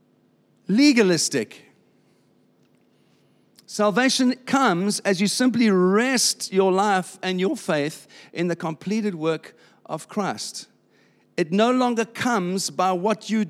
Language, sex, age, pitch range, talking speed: English, male, 50-69, 170-220 Hz, 110 wpm